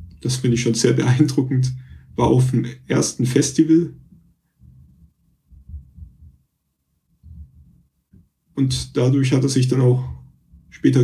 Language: German